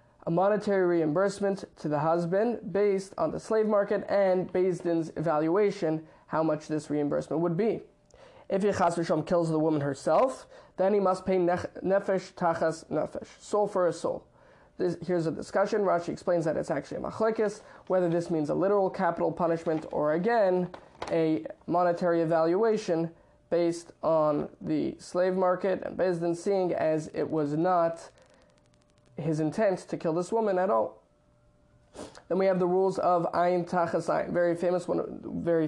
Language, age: English, 20-39